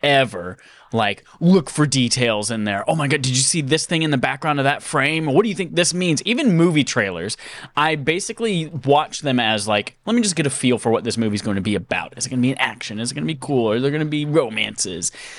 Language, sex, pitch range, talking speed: English, male, 110-155 Hz, 275 wpm